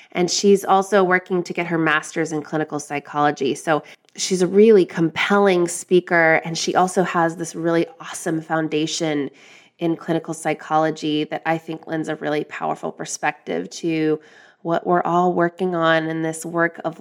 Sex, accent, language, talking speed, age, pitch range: female, American, English, 160 wpm, 20-39, 155-190 Hz